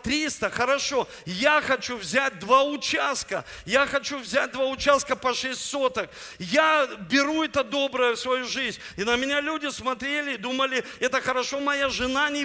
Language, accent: Russian, native